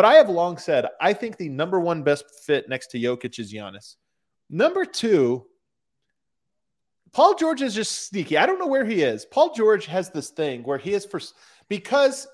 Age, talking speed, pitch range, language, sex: 30-49, 195 wpm, 125-185 Hz, English, male